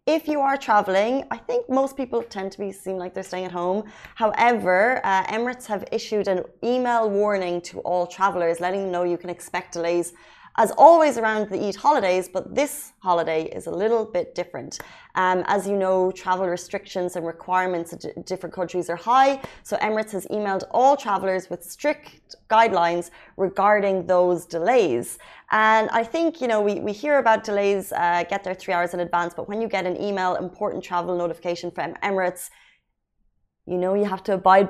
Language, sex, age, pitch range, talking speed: Arabic, female, 20-39, 180-220 Hz, 185 wpm